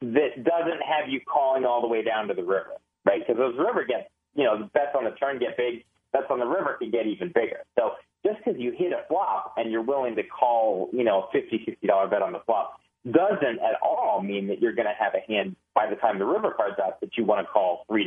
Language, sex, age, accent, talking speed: English, male, 30-49, American, 260 wpm